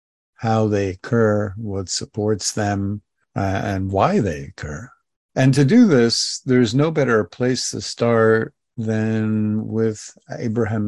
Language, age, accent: English, 50-69, American